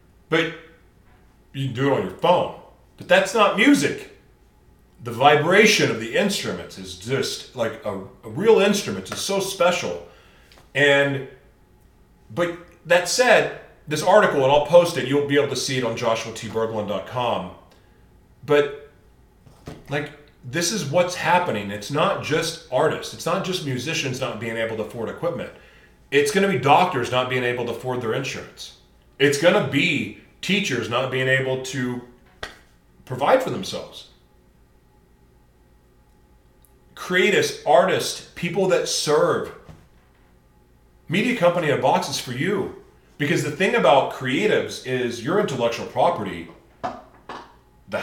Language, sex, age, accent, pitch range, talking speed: English, male, 40-59, American, 105-175 Hz, 135 wpm